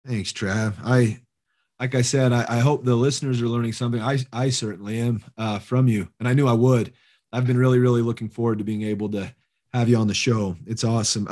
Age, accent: 30-49, American